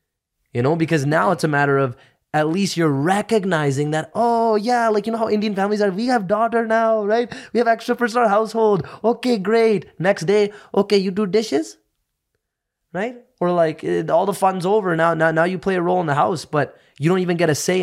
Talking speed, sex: 215 wpm, male